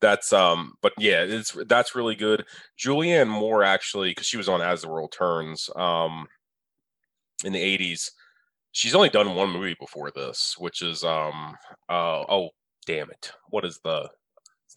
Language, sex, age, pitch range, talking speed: English, male, 20-39, 85-120 Hz, 165 wpm